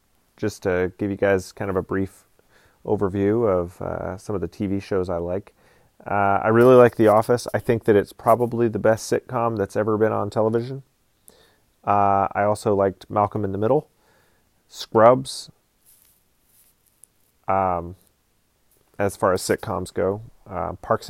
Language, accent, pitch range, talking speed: English, American, 100-120 Hz, 155 wpm